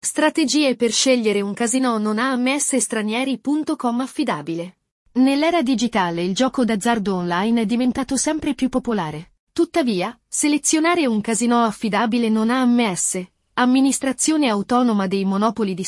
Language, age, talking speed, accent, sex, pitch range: Italian, 30-49, 120 wpm, native, female, 215-275 Hz